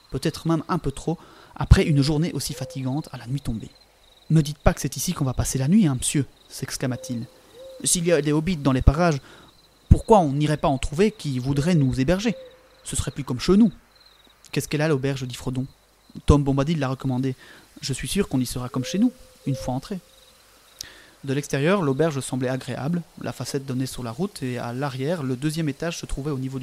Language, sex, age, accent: French, male, 30-49, French